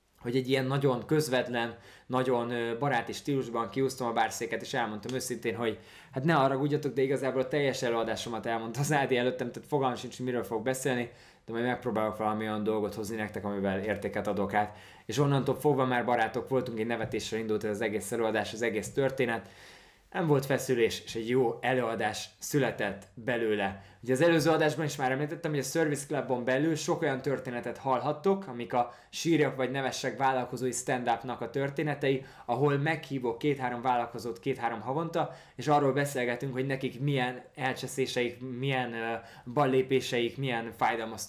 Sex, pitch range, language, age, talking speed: male, 115-135 Hz, Hungarian, 20-39, 165 wpm